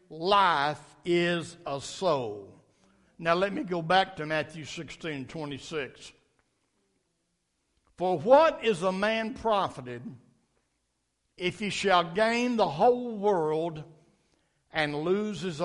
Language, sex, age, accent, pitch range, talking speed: English, male, 60-79, American, 155-225 Hz, 110 wpm